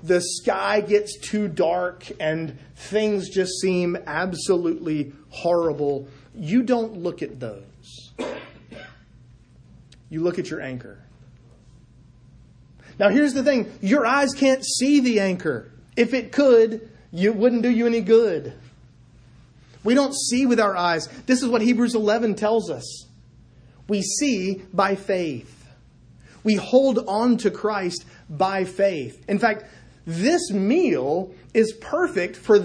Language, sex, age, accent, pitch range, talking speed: English, male, 30-49, American, 140-225 Hz, 130 wpm